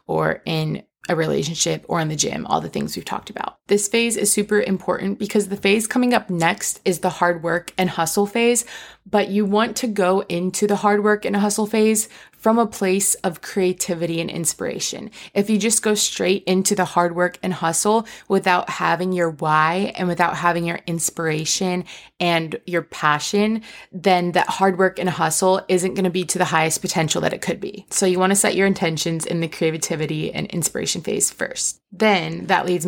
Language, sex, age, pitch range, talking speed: English, female, 20-39, 175-200 Hz, 195 wpm